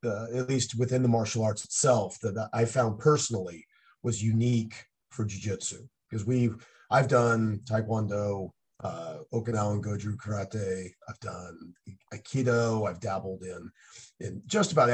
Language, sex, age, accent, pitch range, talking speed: English, male, 30-49, American, 105-125 Hz, 140 wpm